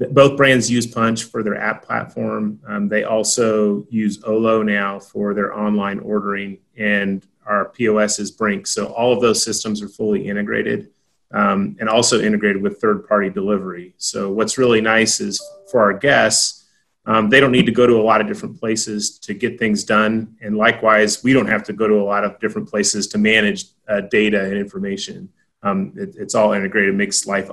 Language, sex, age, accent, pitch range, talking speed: English, male, 30-49, American, 105-120 Hz, 190 wpm